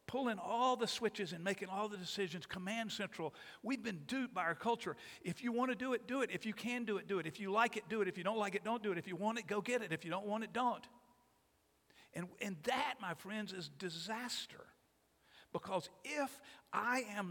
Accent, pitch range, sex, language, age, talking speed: American, 175-235 Hz, male, English, 50-69, 245 wpm